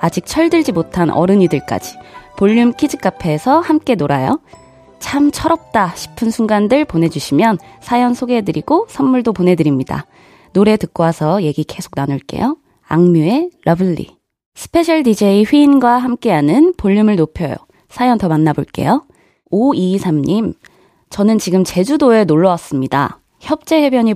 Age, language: 20-39, Korean